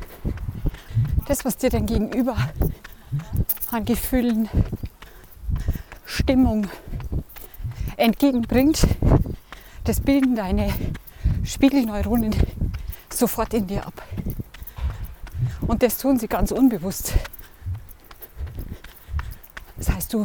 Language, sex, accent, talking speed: German, female, German, 75 wpm